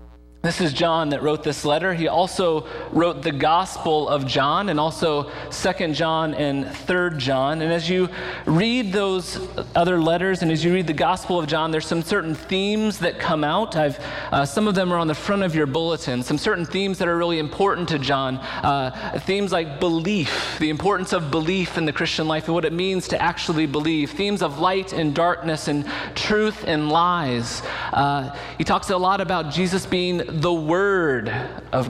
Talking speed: 195 wpm